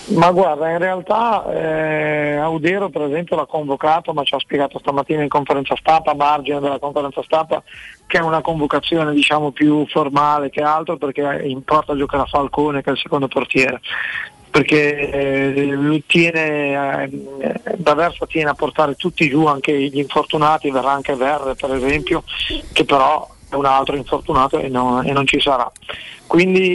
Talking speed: 165 wpm